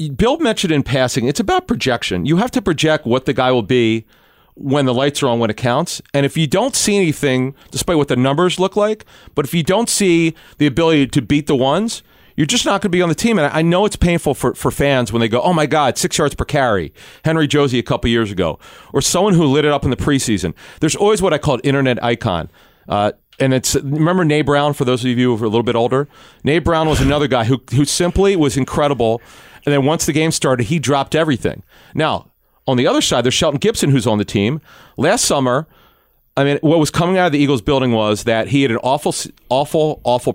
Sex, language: male, English